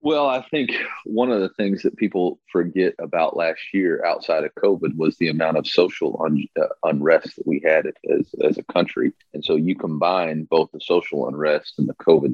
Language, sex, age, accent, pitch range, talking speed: English, male, 40-59, American, 85-120 Hz, 205 wpm